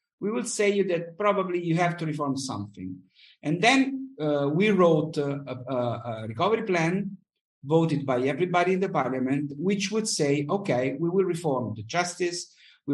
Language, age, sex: English, 50-69, male